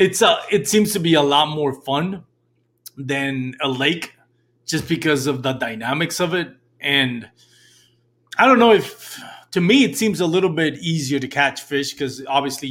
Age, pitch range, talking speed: 20-39, 120-145 Hz, 185 wpm